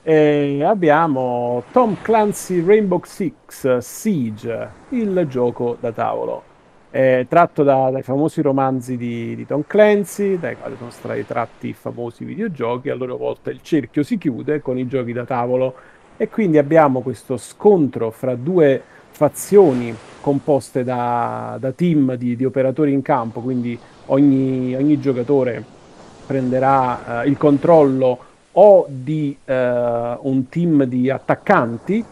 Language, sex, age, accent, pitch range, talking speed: Italian, male, 40-59, native, 125-155 Hz, 130 wpm